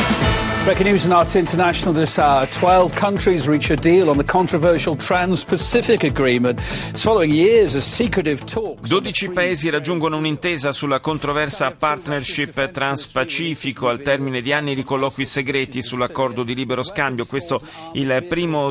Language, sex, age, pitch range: Italian, male, 40-59, 125-165 Hz